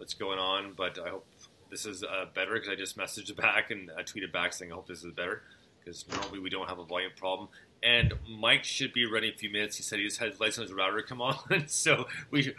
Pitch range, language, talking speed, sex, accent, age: 90-115 Hz, English, 260 wpm, male, American, 30-49